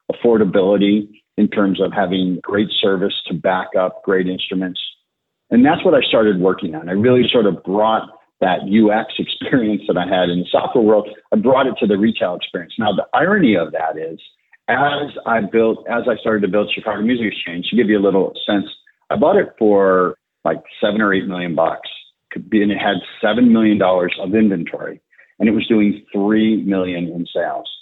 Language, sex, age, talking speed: English, male, 50-69, 190 wpm